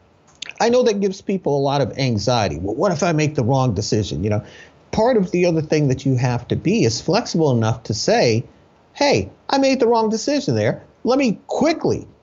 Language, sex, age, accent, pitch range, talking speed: English, male, 50-69, American, 120-155 Hz, 215 wpm